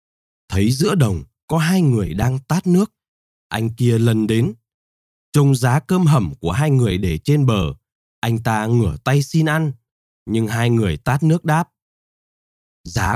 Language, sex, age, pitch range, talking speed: Vietnamese, male, 20-39, 105-155 Hz, 165 wpm